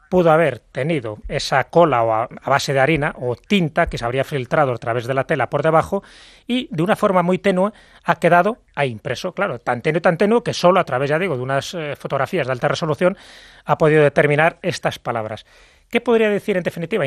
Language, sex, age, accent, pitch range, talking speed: English, male, 30-49, Spanish, 125-180 Hz, 205 wpm